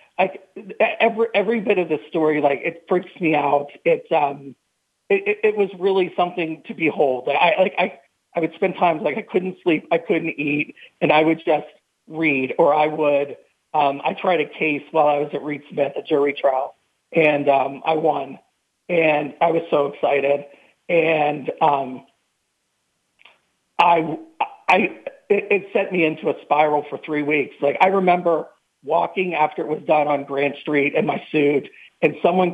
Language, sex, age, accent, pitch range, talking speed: English, male, 40-59, American, 145-175 Hz, 175 wpm